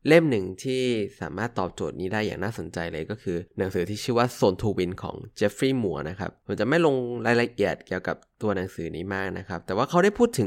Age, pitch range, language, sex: 20-39, 95-125 Hz, Thai, male